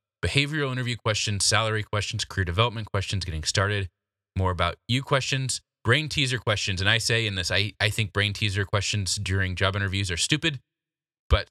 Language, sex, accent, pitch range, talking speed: English, male, American, 90-110 Hz, 175 wpm